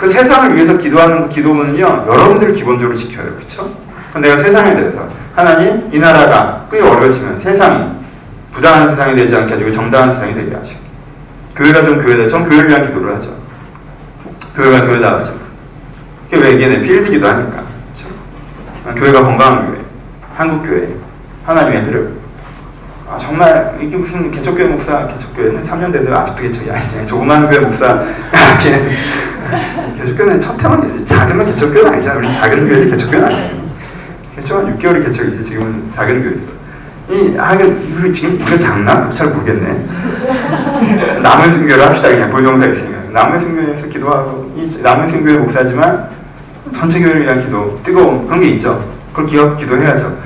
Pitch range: 130-175 Hz